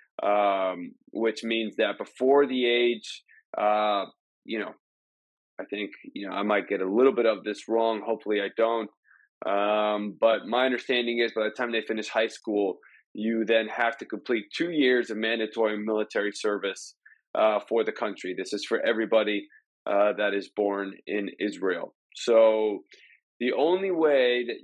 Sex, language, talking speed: male, English, 165 wpm